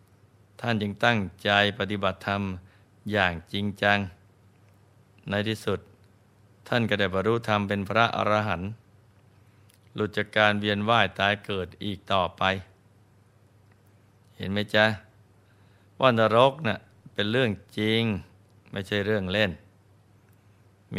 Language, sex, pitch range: Thai, male, 100-110 Hz